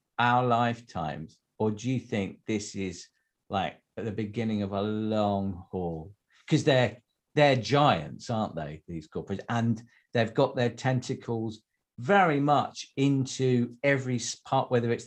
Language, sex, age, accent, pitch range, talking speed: English, male, 50-69, British, 115-150 Hz, 145 wpm